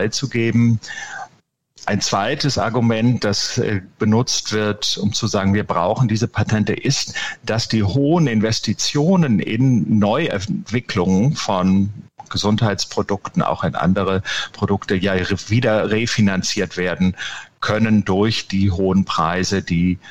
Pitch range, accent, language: 95-115 Hz, German, German